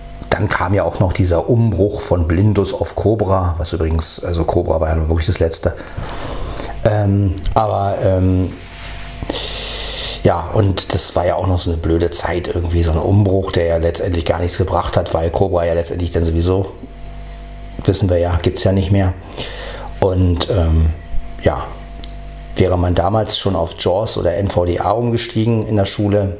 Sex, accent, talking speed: male, German, 170 wpm